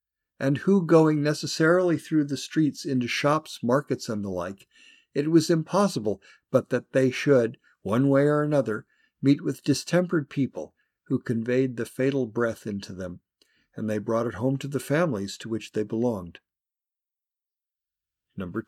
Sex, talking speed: male, 155 wpm